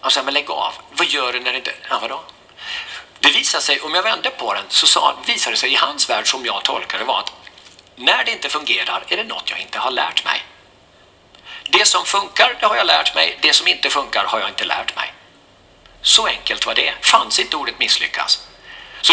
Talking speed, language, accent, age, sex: 225 wpm, Swedish, native, 50-69, male